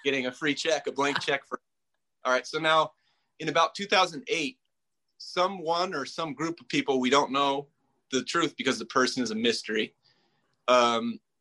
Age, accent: 30-49, American